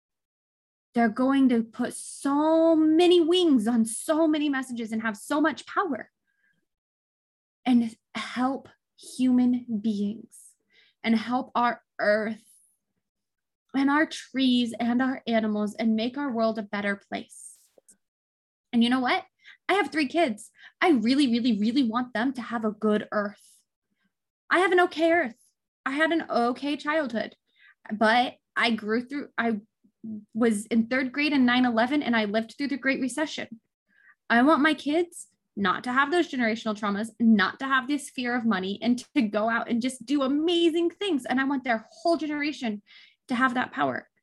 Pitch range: 225-290 Hz